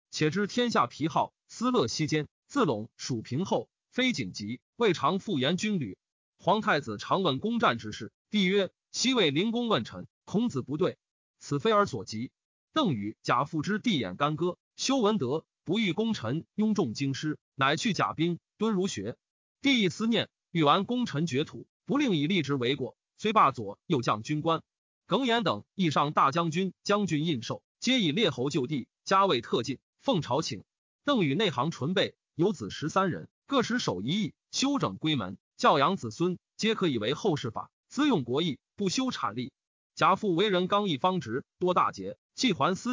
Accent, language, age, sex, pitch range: native, Chinese, 30-49, male, 145-215 Hz